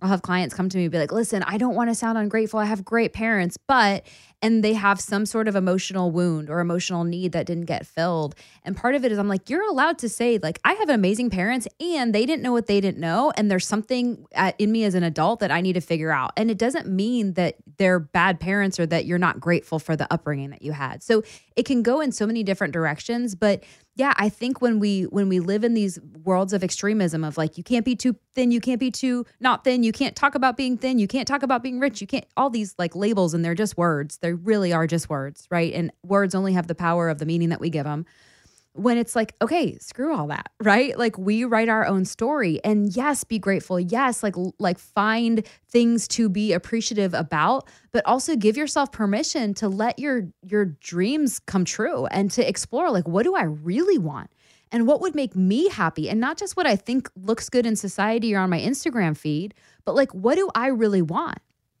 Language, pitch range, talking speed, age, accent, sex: English, 175-235 Hz, 240 wpm, 20-39, American, female